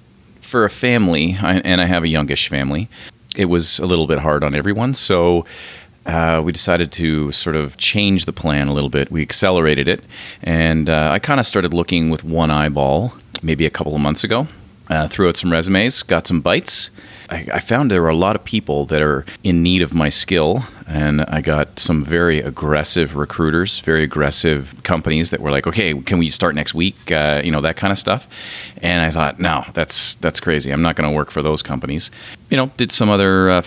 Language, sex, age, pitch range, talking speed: English, male, 40-59, 75-95 Hz, 210 wpm